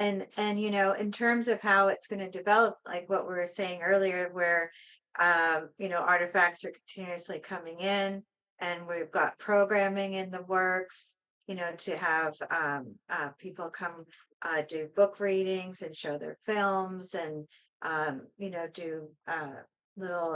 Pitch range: 170-195 Hz